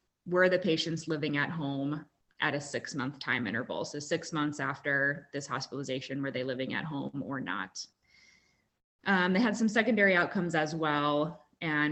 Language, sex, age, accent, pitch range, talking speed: English, female, 20-39, American, 145-165 Hz, 170 wpm